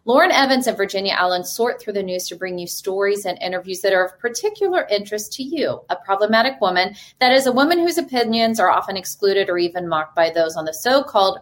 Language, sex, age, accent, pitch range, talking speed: English, female, 30-49, American, 180-225 Hz, 220 wpm